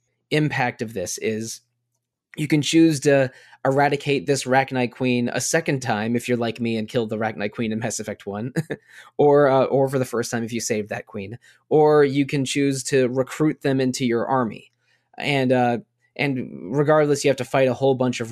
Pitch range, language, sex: 120-145 Hz, English, male